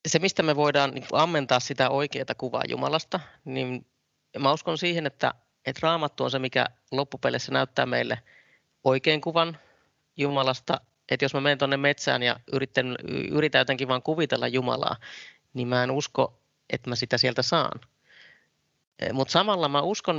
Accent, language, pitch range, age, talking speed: native, Finnish, 130-150 Hz, 30-49, 150 wpm